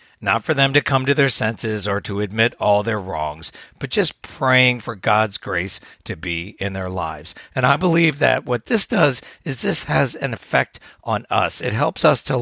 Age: 60-79